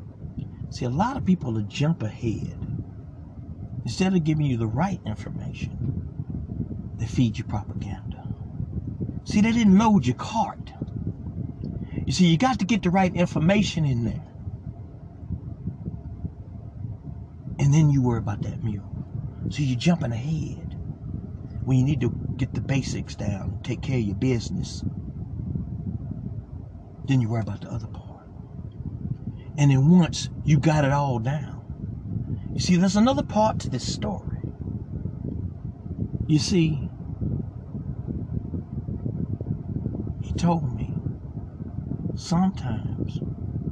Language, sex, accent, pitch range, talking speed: English, male, American, 115-175 Hz, 120 wpm